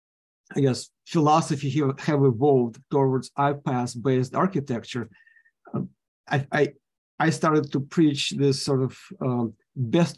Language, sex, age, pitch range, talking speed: English, male, 50-69, 130-160 Hz, 130 wpm